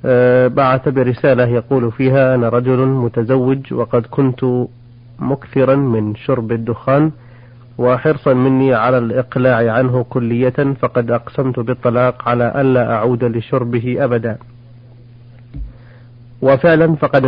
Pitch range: 120-130 Hz